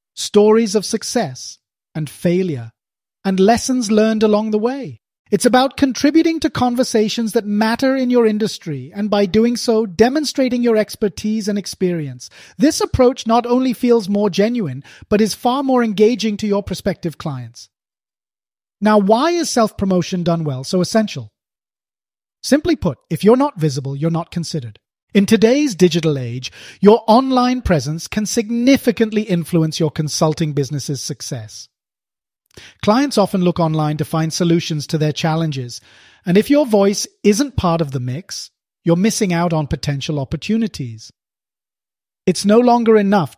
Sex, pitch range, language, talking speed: male, 145-225 Hz, English, 145 wpm